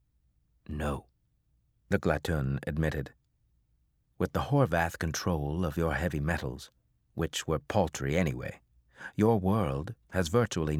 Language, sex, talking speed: English, male, 110 wpm